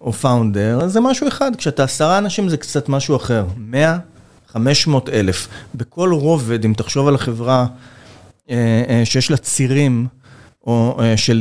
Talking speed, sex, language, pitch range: 135 wpm, male, Hebrew, 115-150 Hz